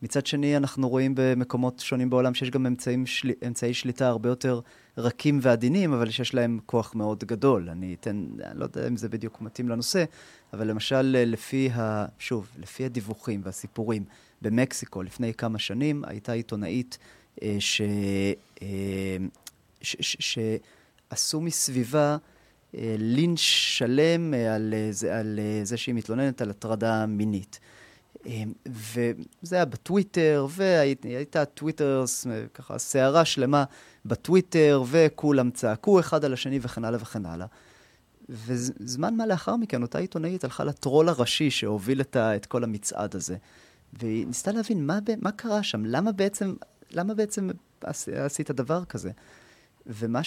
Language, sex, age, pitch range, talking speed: Hebrew, male, 30-49, 110-145 Hz, 135 wpm